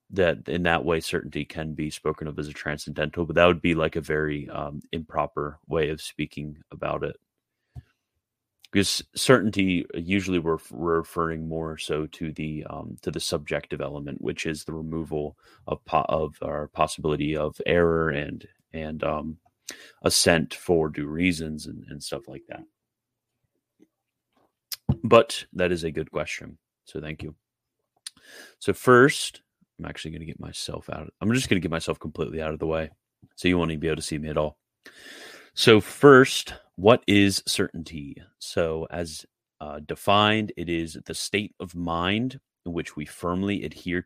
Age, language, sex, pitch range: 30-49, English, male, 75-90 Hz